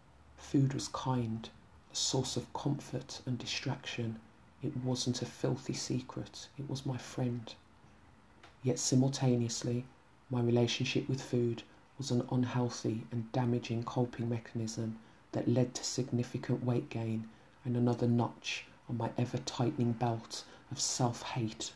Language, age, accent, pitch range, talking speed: English, 40-59, British, 115-130 Hz, 125 wpm